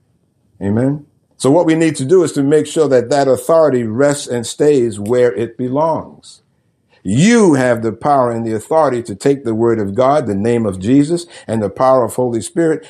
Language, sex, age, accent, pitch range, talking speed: English, male, 50-69, American, 110-140 Hz, 200 wpm